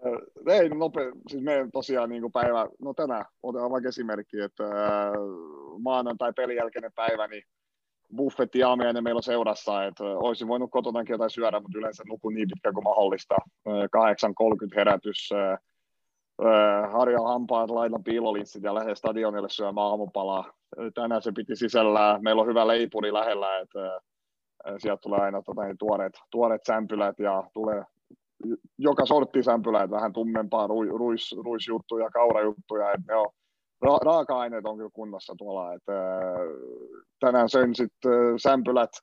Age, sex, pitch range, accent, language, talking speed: 30-49, male, 105-125 Hz, native, Finnish, 130 wpm